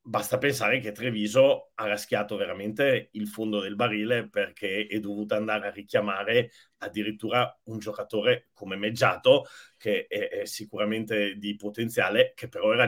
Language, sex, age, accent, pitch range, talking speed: Italian, male, 40-59, native, 105-170 Hz, 145 wpm